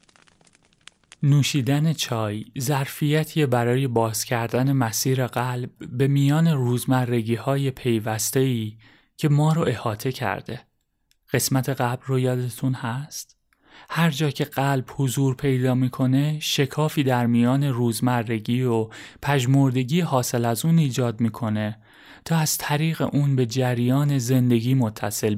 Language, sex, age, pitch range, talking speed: Persian, male, 30-49, 120-145 Hz, 110 wpm